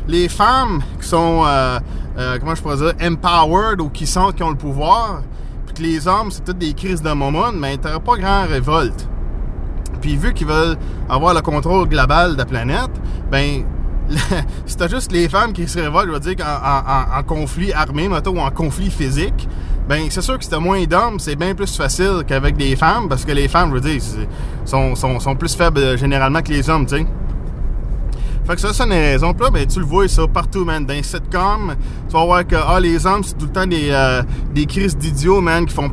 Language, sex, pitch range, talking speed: English, male, 135-170 Hz, 230 wpm